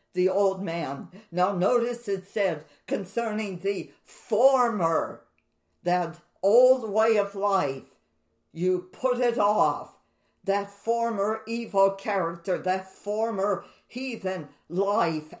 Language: English